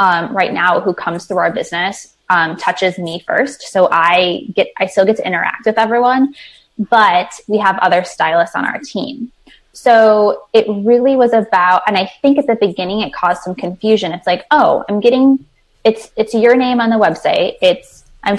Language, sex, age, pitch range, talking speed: English, female, 10-29, 180-230 Hz, 195 wpm